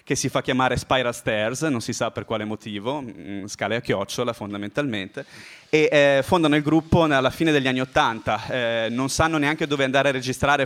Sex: male